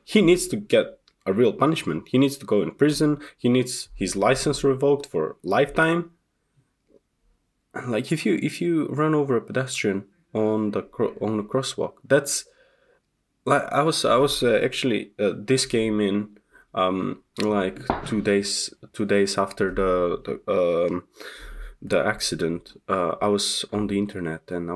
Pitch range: 95-135 Hz